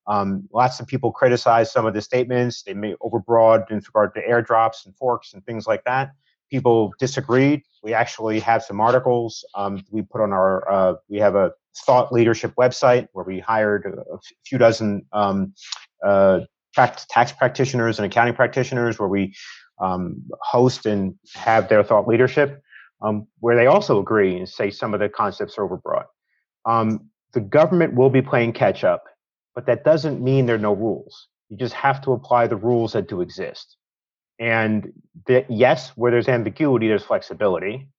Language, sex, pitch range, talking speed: English, male, 105-125 Hz, 175 wpm